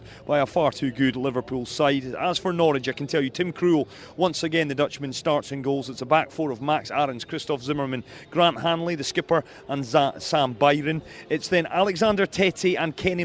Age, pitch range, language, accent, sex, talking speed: 30-49, 135-165 Hz, English, British, male, 210 wpm